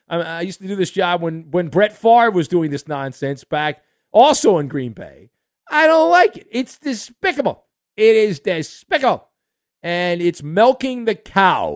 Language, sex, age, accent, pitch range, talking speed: English, male, 50-69, American, 150-220 Hz, 170 wpm